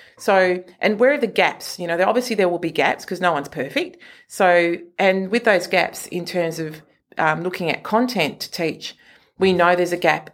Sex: female